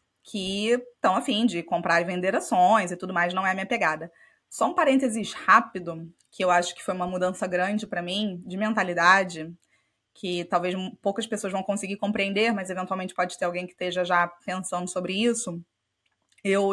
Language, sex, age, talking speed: Portuguese, female, 20-39, 185 wpm